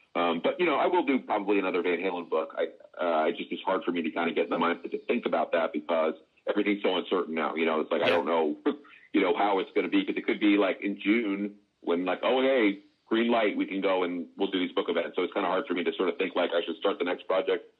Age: 40-59